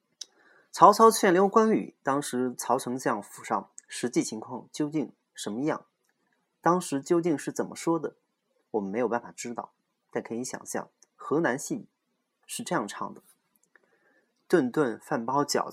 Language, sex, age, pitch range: Chinese, male, 30-49, 120-170 Hz